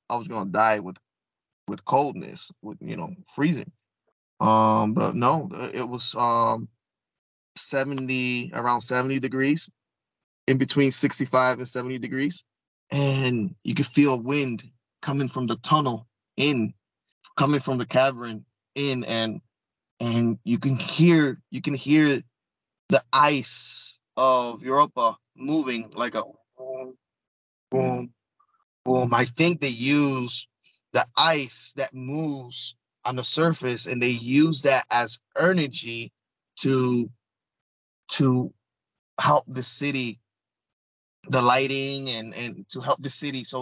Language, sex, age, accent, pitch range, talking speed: English, male, 20-39, American, 120-145 Hz, 125 wpm